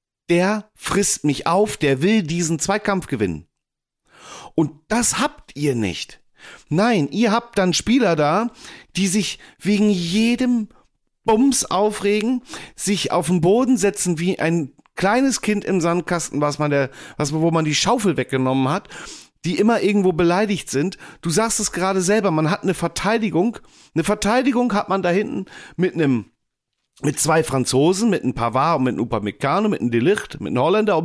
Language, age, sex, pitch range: German, 40-59, male, 160-220 Hz